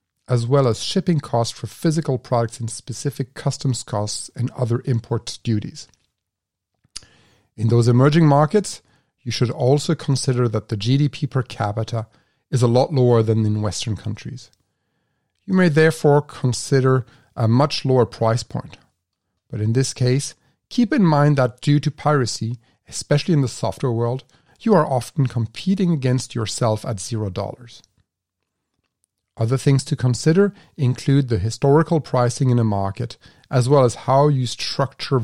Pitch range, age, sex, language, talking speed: 110-140 Hz, 40-59, male, English, 150 wpm